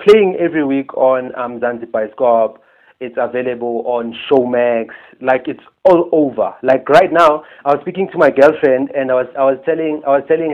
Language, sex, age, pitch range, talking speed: English, male, 30-49, 135-165 Hz, 190 wpm